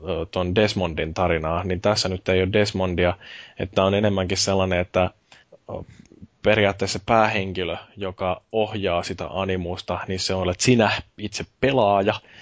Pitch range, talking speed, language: 85-100 Hz, 125 wpm, Finnish